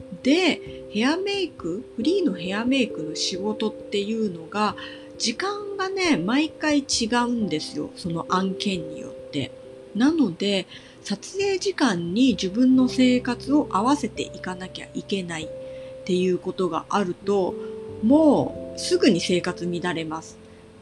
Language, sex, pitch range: Japanese, female, 175-265 Hz